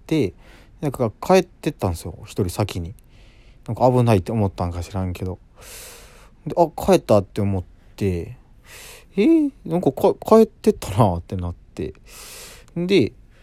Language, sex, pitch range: Japanese, male, 95-130 Hz